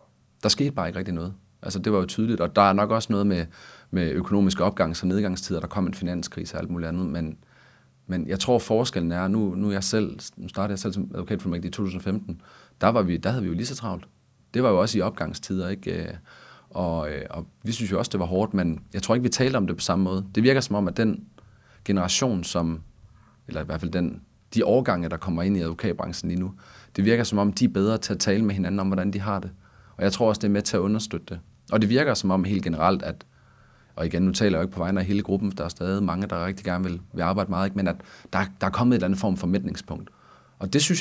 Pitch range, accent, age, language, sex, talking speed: 90-105 Hz, native, 30-49, Danish, male, 270 wpm